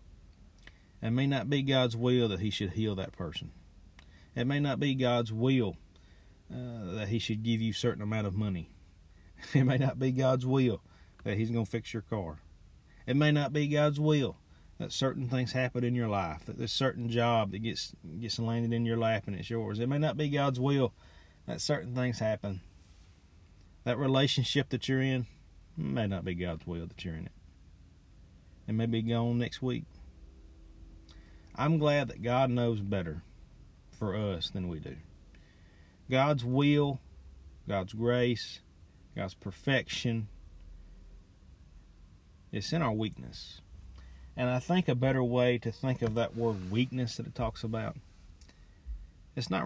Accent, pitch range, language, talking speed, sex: American, 85-125 Hz, English, 165 wpm, male